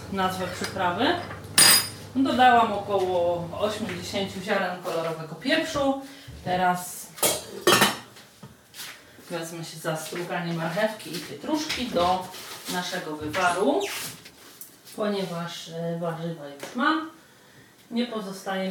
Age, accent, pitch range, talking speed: 30-49, native, 155-185 Hz, 80 wpm